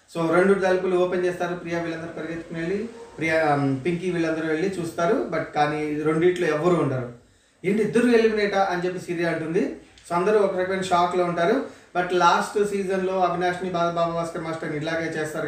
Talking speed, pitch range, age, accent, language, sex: 160 wpm, 150-180 Hz, 30-49, native, Telugu, male